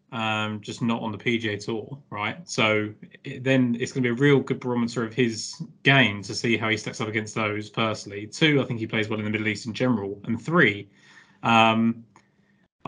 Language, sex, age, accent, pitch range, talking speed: English, male, 20-39, British, 110-130 Hz, 215 wpm